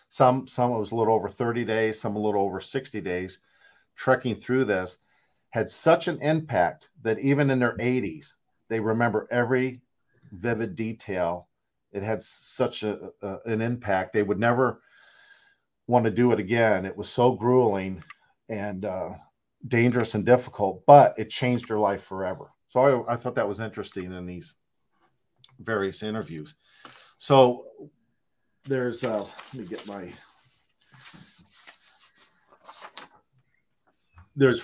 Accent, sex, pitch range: American, male, 105-135 Hz